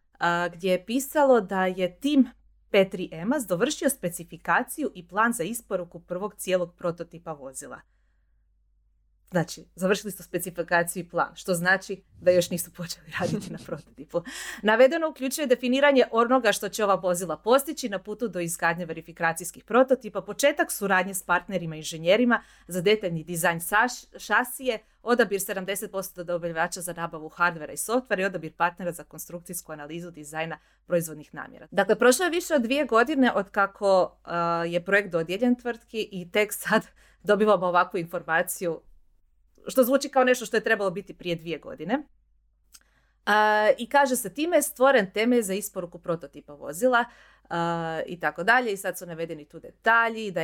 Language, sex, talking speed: Croatian, female, 150 wpm